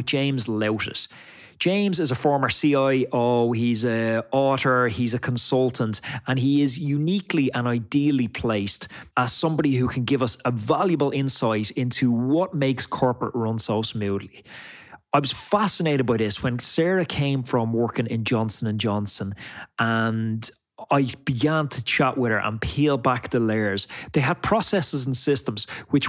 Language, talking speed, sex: English, 155 wpm, male